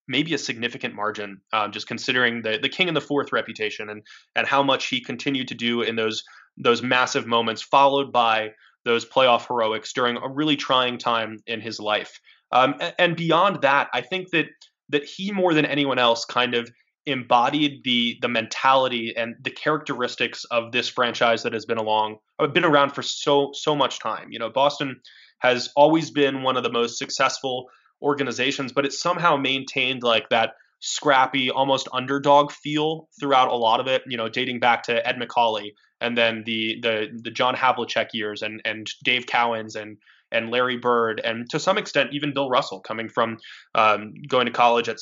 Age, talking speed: 20-39, 190 wpm